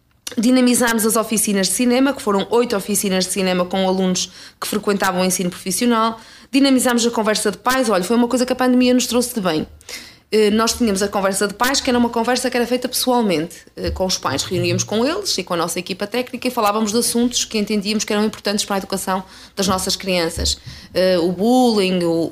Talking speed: 205 wpm